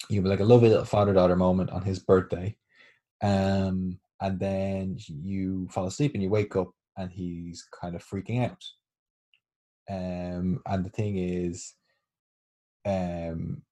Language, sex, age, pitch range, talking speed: English, male, 20-39, 90-105 Hz, 145 wpm